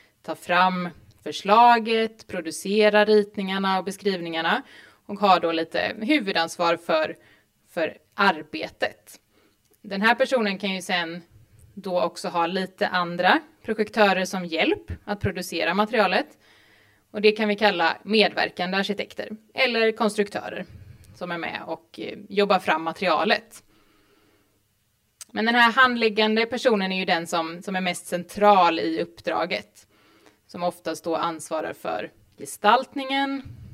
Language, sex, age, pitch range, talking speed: Swedish, female, 20-39, 155-215 Hz, 125 wpm